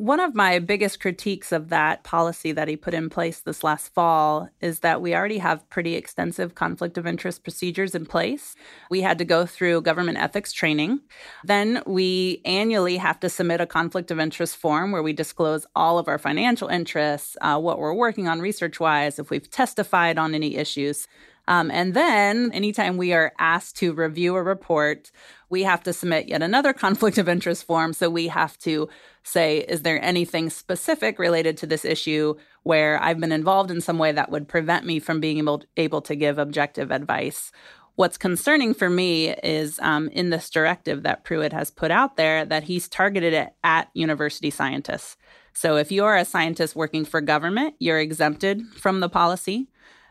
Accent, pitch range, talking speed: American, 155-185 Hz, 185 wpm